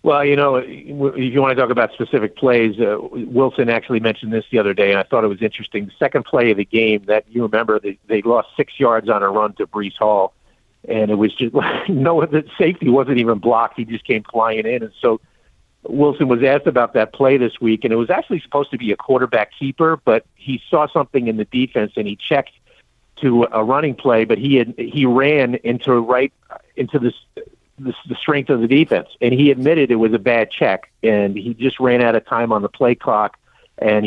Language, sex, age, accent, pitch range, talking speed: English, male, 50-69, American, 110-135 Hz, 225 wpm